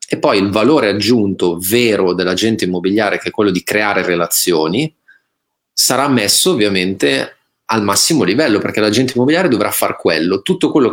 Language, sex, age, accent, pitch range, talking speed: Italian, male, 30-49, native, 90-110 Hz, 155 wpm